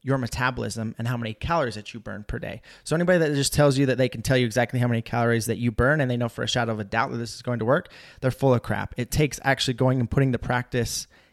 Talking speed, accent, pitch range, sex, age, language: 295 wpm, American, 120-150 Hz, male, 30-49, English